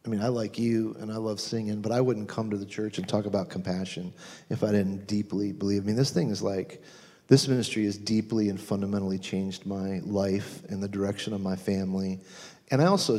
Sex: male